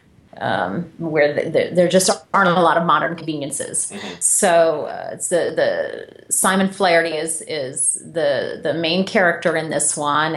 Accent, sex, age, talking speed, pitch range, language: American, female, 30-49, 160 wpm, 165-195 Hz, English